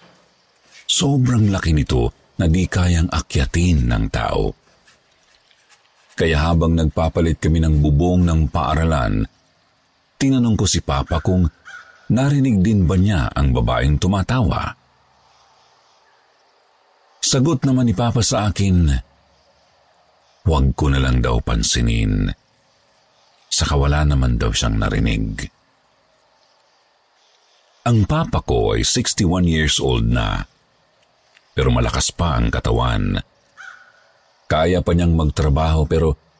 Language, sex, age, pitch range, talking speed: Filipino, male, 50-69, 80-95 Hz, 105 wpm